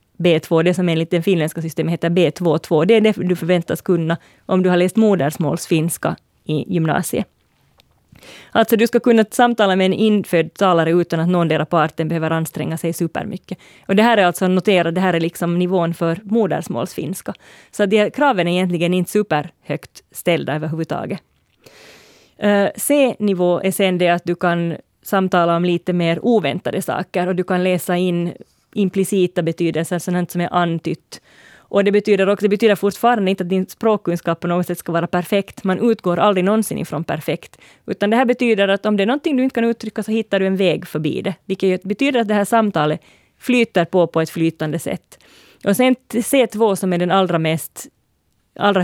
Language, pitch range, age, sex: Swedish, 165-200 Hz, 30-49, female